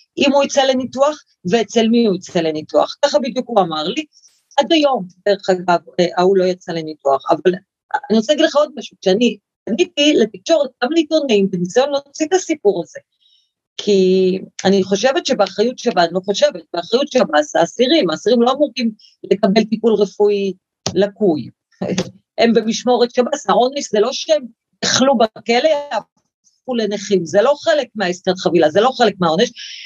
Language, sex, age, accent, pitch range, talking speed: Hebrew, female, 40-59, native, 195-290 Hz, 155 wpm